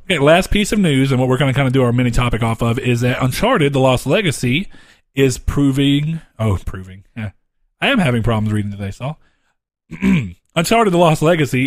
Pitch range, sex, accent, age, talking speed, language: 110-140 Hz, male, American, 40-59, 200 wpm, English